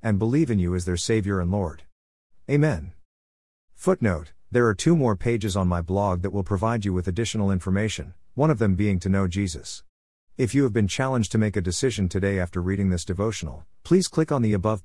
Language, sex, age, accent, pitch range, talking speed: English, male, 50-69, American, 90-115 Hz, 210 wpm